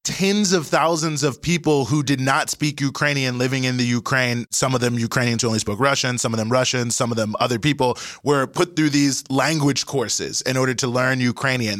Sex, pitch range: male, 125-150 Hz